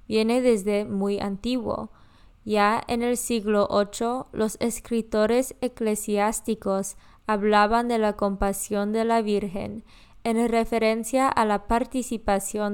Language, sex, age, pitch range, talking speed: Spanish, female, 20-39, 205-235 Hz, 115 wpm